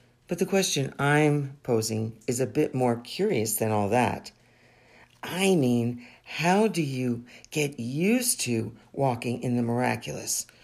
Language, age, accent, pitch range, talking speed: English, 50-69, American, 120-165 Hz, 140 wpm